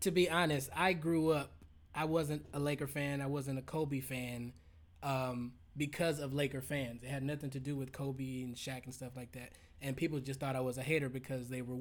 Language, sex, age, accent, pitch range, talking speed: English, male, 20-39, American, 135-160 Hz, 230 wpm